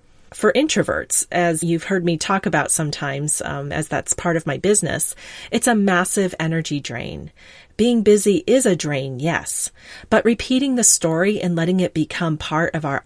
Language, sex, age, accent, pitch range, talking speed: English, female, 40-59, American, 160-220 Hz, 175 wpm